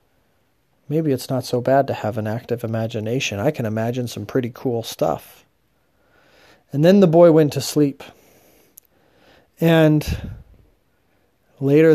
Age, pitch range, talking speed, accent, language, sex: 30-49, 125-165 Hz, 130 wpm, American, English, male